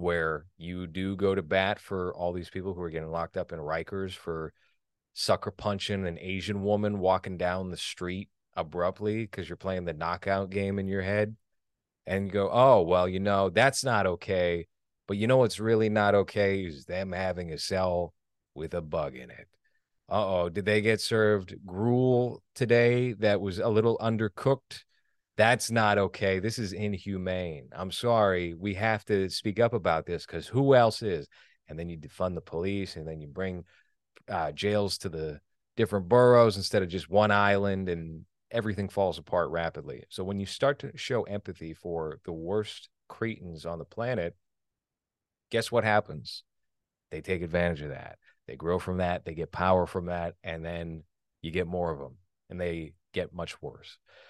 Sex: male